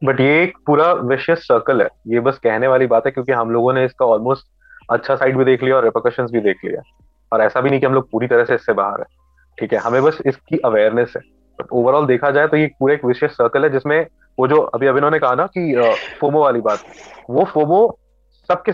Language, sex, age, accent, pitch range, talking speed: Hindi, male, 30-49, native, 125-175 Hz, 230 wpm